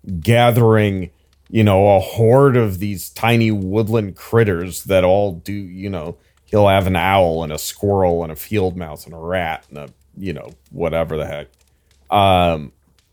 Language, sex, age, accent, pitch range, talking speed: English, male, 30-49, American, 85-115 Hz, 170 wpm